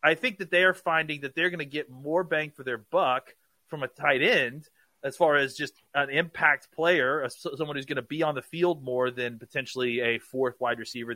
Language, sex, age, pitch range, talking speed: English, male, 30-49, 130-165 Hz, 230 wpm